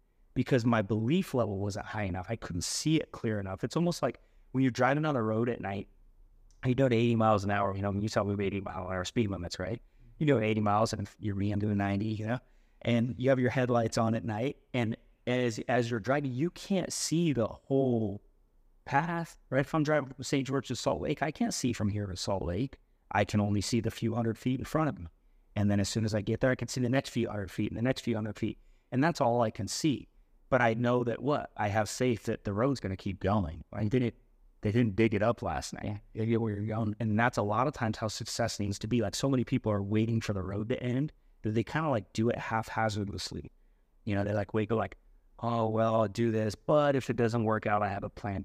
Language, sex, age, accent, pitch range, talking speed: English, male, 30-49, American, 105-125 Hz, 260 wpm